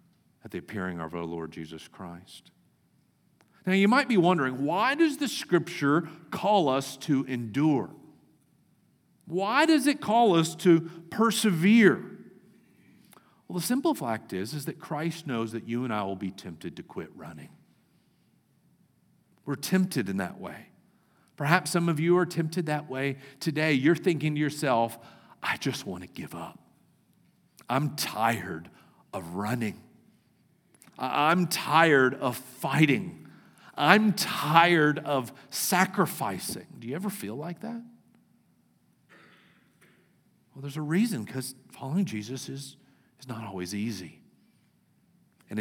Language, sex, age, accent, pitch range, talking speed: English, male, 50-69, American, 125-180 Hz, 135 wpm